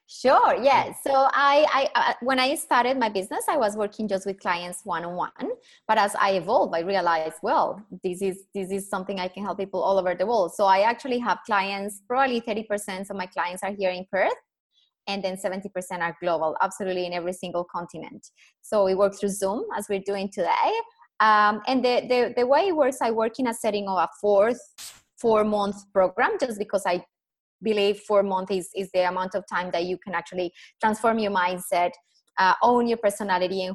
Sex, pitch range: female, 180-225 Hz